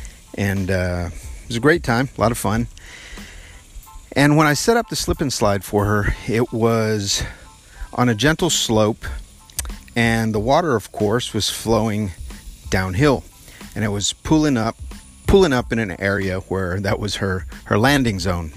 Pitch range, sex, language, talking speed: 85-115 Hz, male, English, 170 wpm